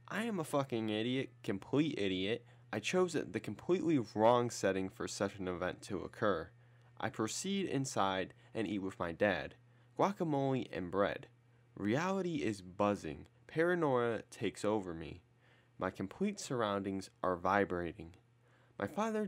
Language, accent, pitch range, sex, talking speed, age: English, American, 95-130 Hz, male, 135 wpm, 20-39